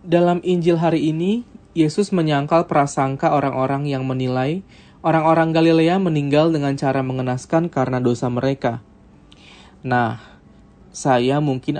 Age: 20-39